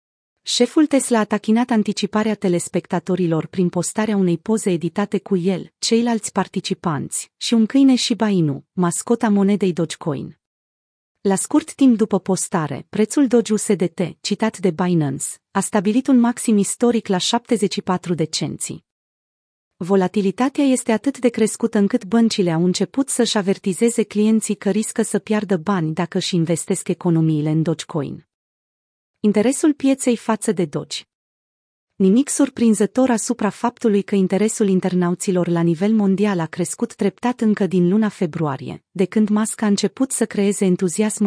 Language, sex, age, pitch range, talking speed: Romanian, female, 30-49, 180-225 Hz, 140 wpm